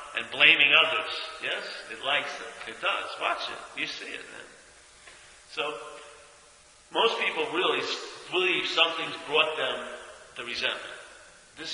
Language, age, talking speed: English, 50-69, 135 wpm